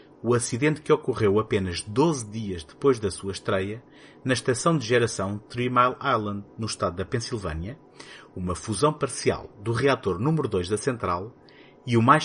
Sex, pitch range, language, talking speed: male, 100-130 Hz, Portuguese, 165 wpm